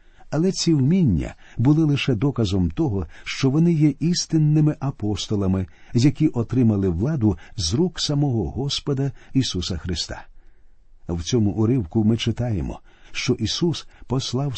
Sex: male